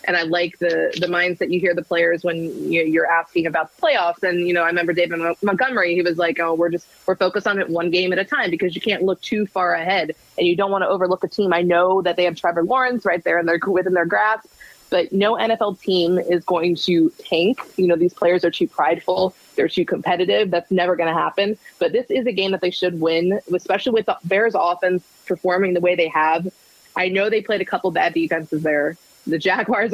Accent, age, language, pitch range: American, 20-39, English, 170-195 Hz